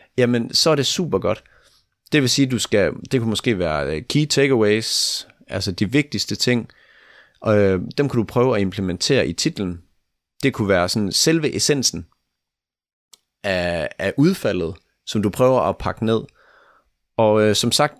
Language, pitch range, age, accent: Danish, 90-130 Hz, 30-49, native